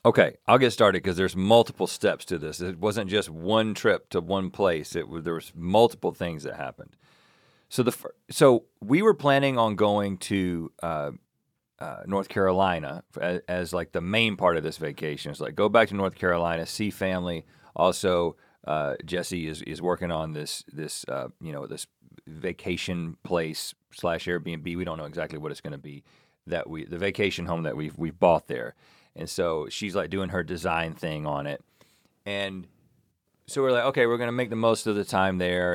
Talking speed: 195 wpm